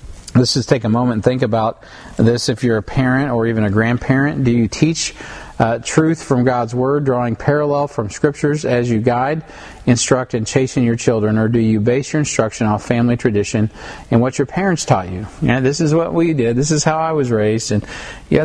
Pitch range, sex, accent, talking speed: 110-140 Hz, male, American, 220 wpm